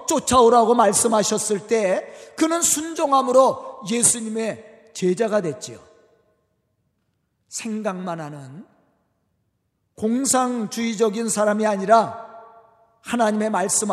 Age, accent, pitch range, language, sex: 40-59, native, 210-275 Hz, Korean, male